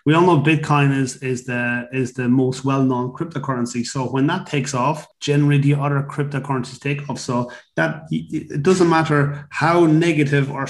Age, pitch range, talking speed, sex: 30-49, 130-150 Hz, 175 wpm, male